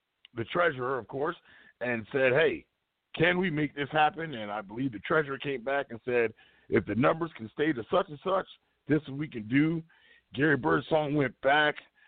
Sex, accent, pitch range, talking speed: male, American, 115-155 Hz, 200 wpm